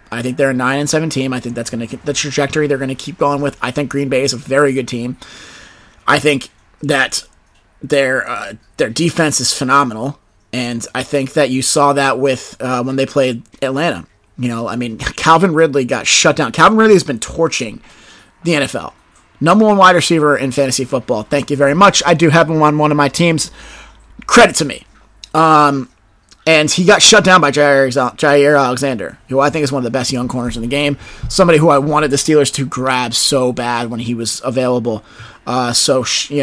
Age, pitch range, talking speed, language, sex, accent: 30-49, 125-150 Hz, 215 wpm, English, male, American